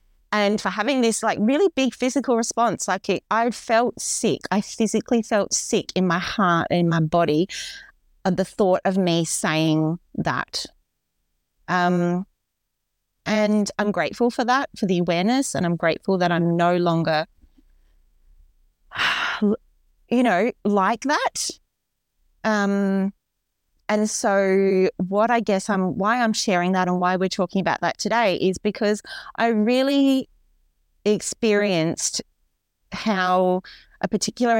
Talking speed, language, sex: 130 wpm, English, female